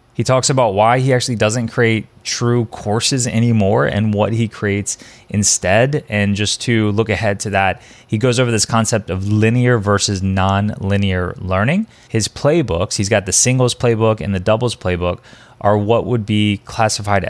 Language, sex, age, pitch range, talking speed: English, male, 20-39, 95-120 Hz, 170 wpm